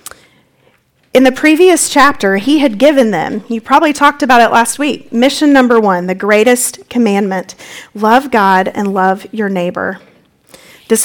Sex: female